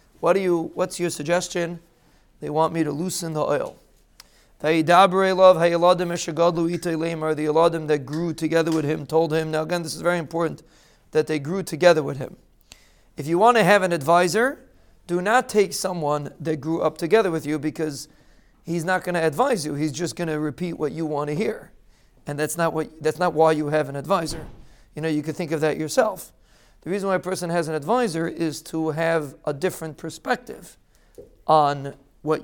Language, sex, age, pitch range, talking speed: English, male, 40-59, 155-180 Hz, 190 wpm